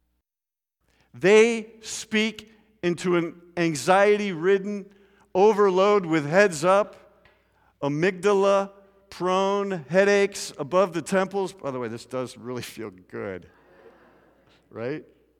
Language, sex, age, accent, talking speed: English, male, 50-69, American, 90 wpm